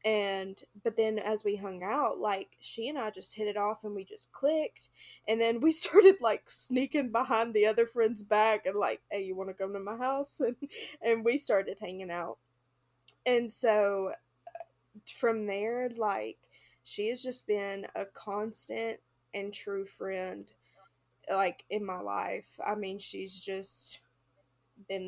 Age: 20-39